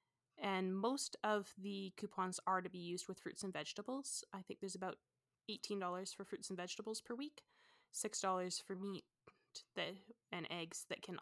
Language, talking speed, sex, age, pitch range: English, 165 wpm, female, 20-39, 170-205 Hz